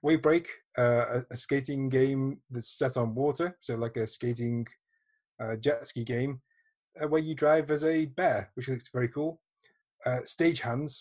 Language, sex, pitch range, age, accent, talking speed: English, male, 115-140 Hz, 30-49, British, 170 wpm